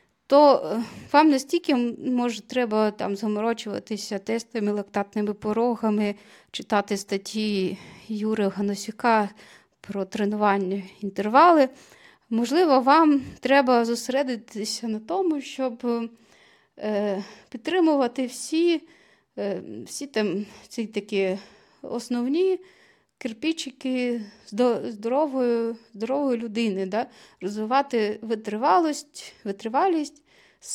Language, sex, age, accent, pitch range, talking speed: Ukrainian, female, 30-49, native, 205-255 Hz, 75 wpm